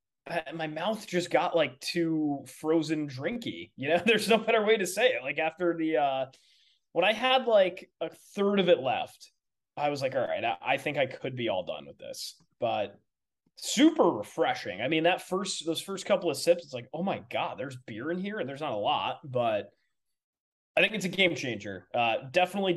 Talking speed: 210 wpm